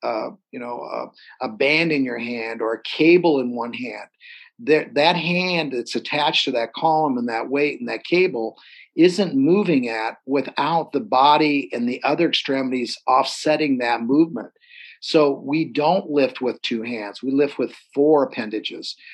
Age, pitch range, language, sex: 50-69, 135-205 Hz, English, male